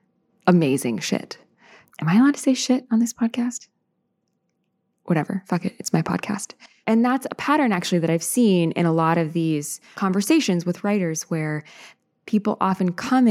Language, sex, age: English, female, 20-39